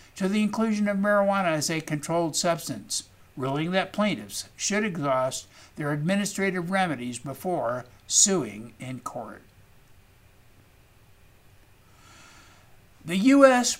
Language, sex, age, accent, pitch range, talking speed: English, male, 60-79, American, 135-200 Hz, 100 wpm